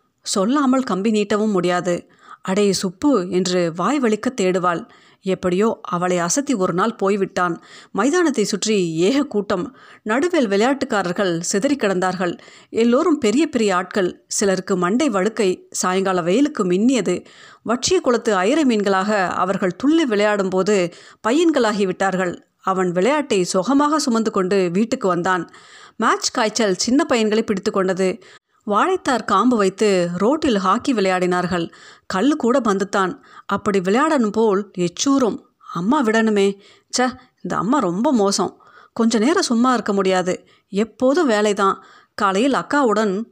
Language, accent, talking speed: Tamil, native, 115 wpm